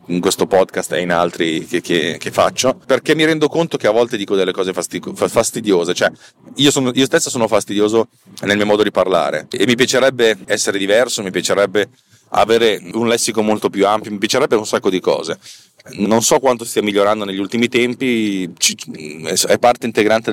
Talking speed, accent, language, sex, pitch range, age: 190 wpm, native, Italian, male, 95-125 Hz, 30-49